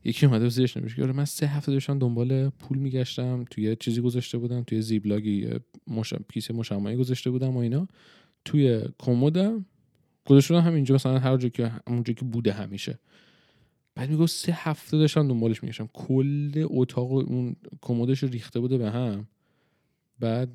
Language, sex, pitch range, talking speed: Persian, male, 115-135 Hz, 160 wpm